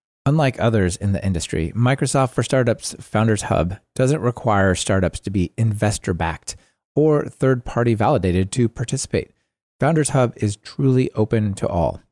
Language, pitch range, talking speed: English, 95-130 Hz, 140 wpm